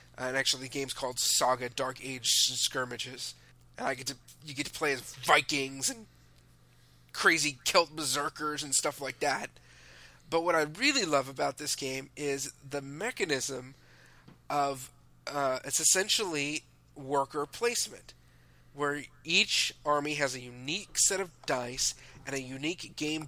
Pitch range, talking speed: 125-155 Hz, 145 wpm